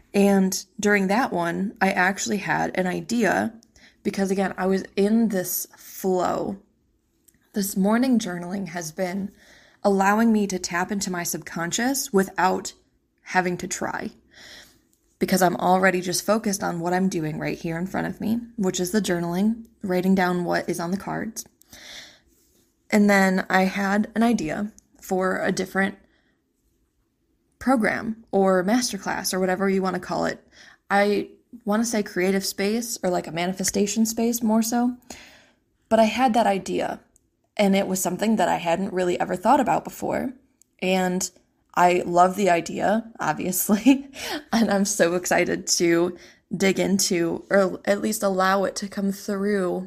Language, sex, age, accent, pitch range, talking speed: English, female, 20-39, American, 185-220 Hz, 155 wpm